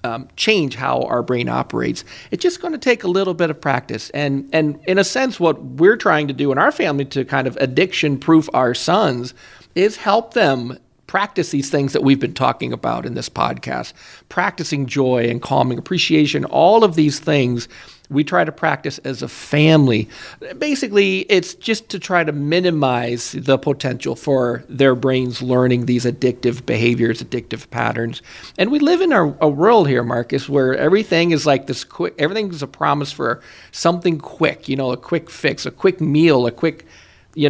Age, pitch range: 40-59, 125-165 Hz